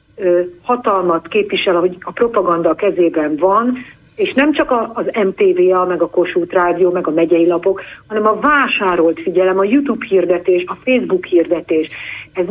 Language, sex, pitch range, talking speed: Hungarian, female, 180-245 Hz, 150 wpm